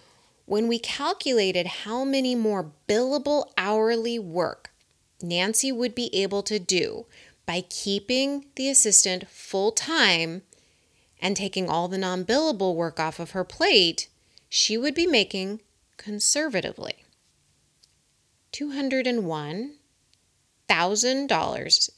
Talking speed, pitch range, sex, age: 100 wpm, 180-255 Hz, female, 30-49